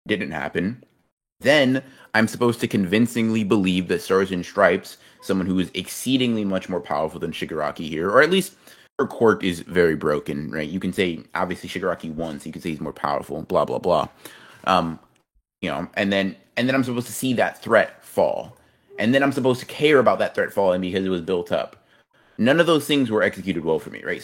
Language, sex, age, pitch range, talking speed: English, male, 30-49, 95-125 Hz, 210 wpm